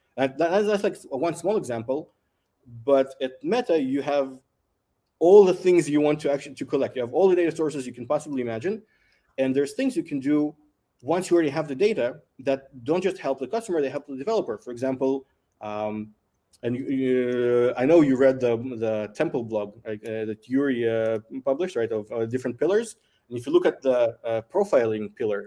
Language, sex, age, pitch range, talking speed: English, male, 20-39, 115-150 Hz, 195 wpm